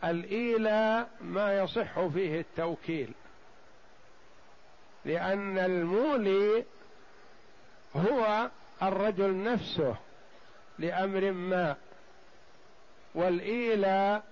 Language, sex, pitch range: Arabic, male, 185-215 Hz